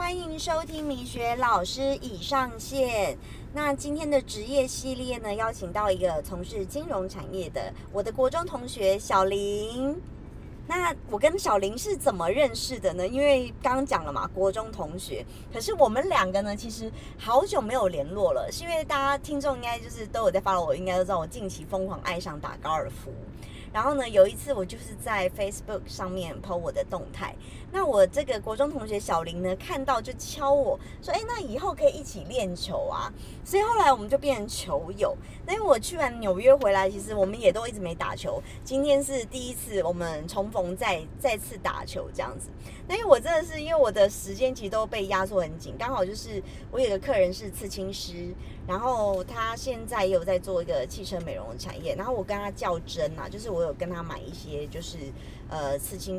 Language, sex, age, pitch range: Chinese, male, 30-49, 190-280 Hz